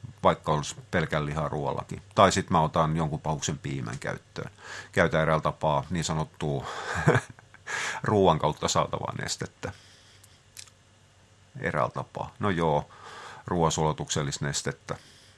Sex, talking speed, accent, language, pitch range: male, 105 wpm, native, Finnish, 80-105 Hz